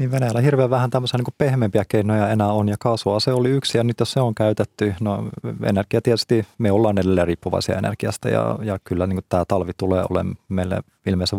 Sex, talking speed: male, 205 wpm